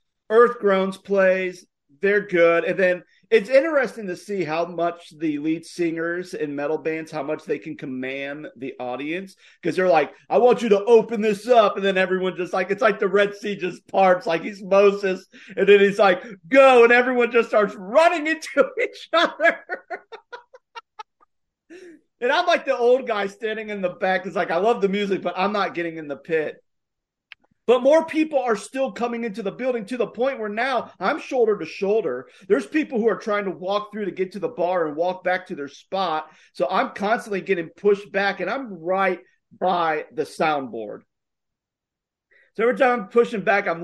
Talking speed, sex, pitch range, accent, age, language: 195 wpm, male, 180-240 Hz, American, 40-59, English